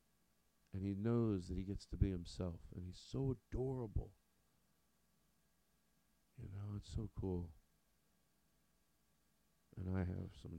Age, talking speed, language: 40-59, 125 wpm, English